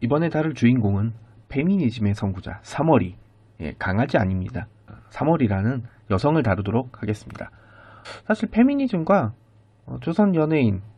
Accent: native